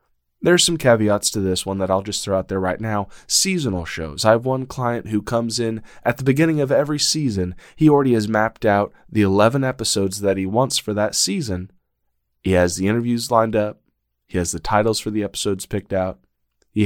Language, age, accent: English, 20-39, American